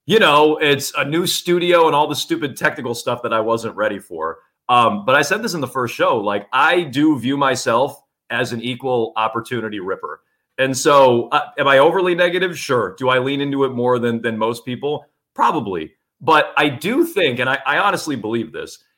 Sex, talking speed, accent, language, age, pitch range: male, 205 wpm, American, English, 30-49, 125-175 Hz